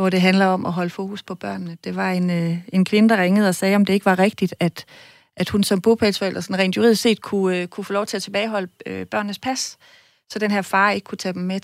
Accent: native